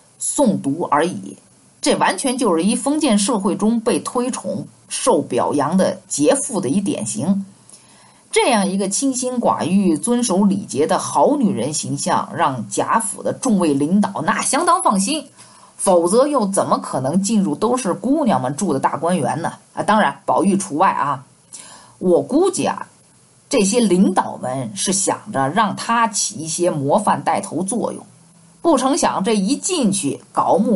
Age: 50-69